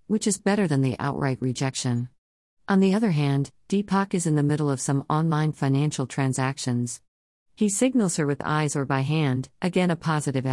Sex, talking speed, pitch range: female, 180 wpm, 130-175 Hz